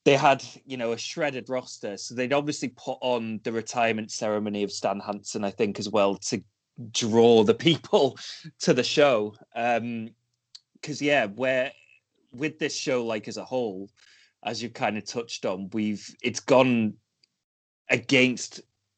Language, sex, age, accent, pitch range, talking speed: English, male, 20-39, British, 105-125 Hz, 160 wpm